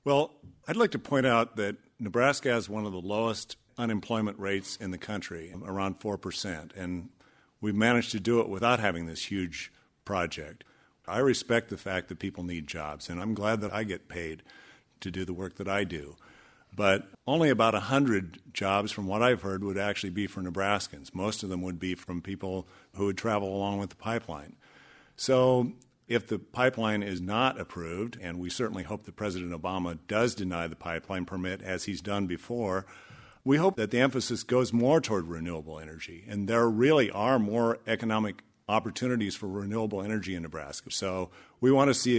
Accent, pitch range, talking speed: American, 95-115 Hz, 185 wpm